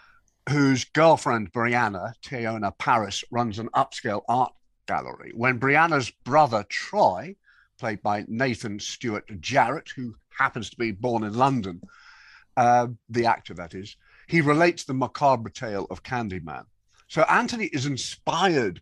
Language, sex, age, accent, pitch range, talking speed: English, male, 50-69, British, 110-150 Hz, 135 wpm